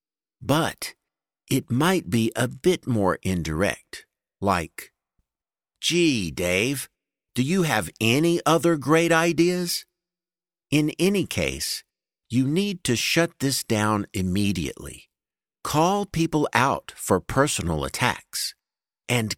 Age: 50-69